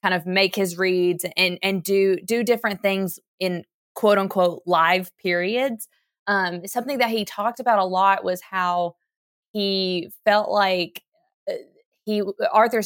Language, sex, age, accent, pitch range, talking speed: English, female, 20-39, American, 175-215 Hz, 145 wpm